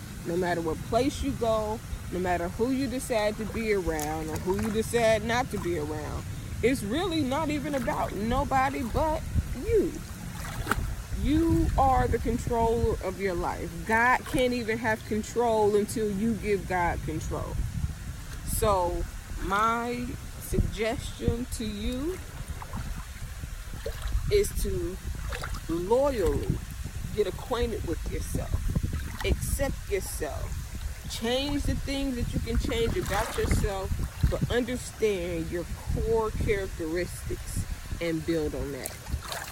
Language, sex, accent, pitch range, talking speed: English, female, American, 170-235 Hz, 120 wpm